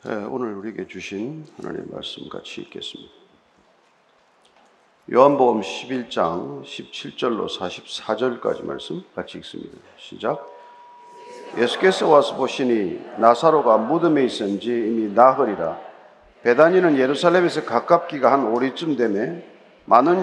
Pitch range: 130-175 Hz